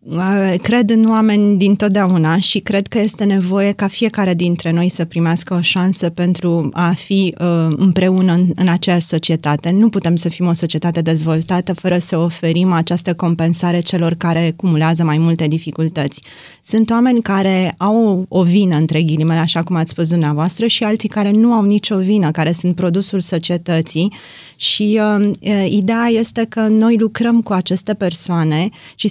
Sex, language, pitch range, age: female, Romanian, 170-195 Hz, 20-39